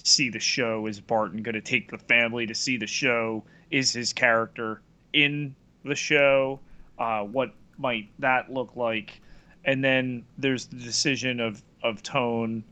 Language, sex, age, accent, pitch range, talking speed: English, male, 30-49, American, 105-130 Hz, 160 wpm